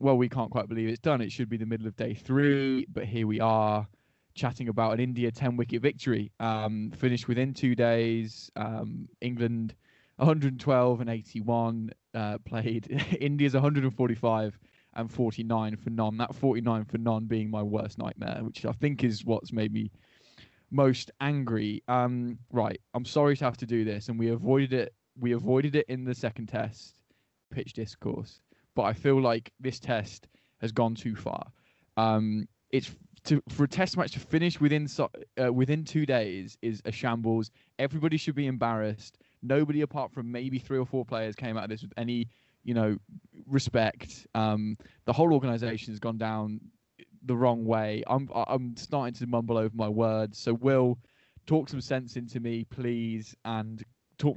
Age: 10-29